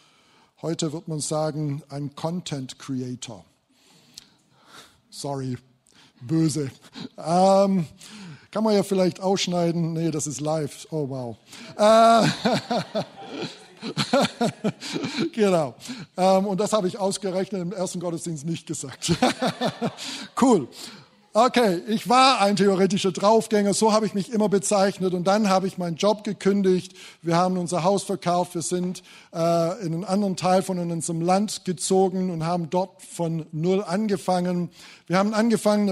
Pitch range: 165-200 Hz